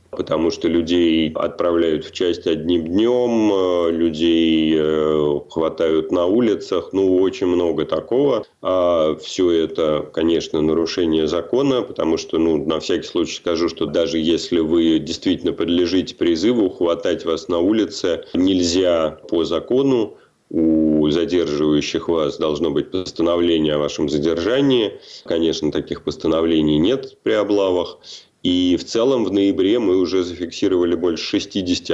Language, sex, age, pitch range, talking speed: Russian, male, 30-49, 80-90 Hz, 130 wpm